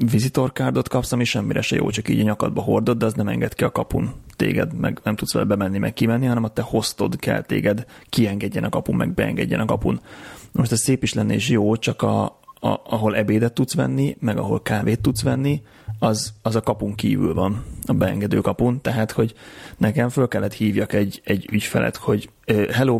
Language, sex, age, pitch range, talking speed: Hungarian, male, 30-49, 105-120 Hz, 200 wpm